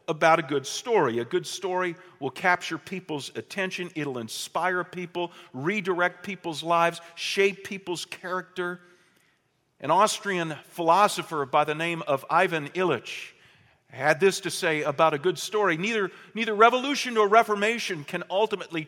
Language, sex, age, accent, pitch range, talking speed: English, male, 50-69, American, 150-200 Hz, 140 wpm